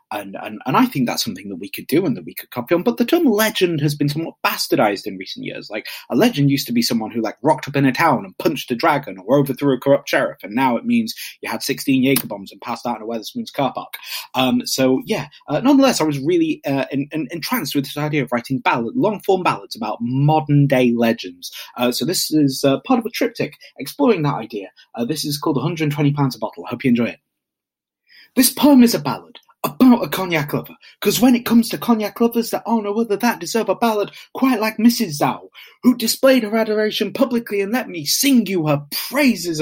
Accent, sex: British, male